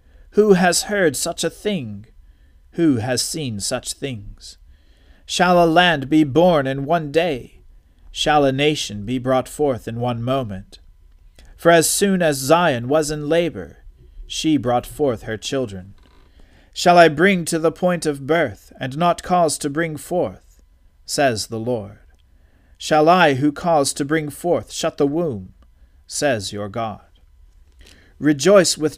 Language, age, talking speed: English, 40-59, 150 wpm